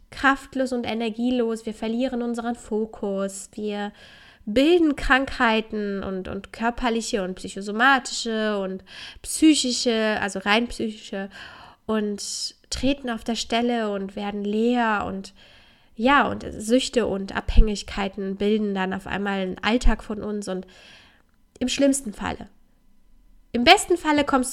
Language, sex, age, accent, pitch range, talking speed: German, female, 10-29, German, 215-265 Hz, 120 wpm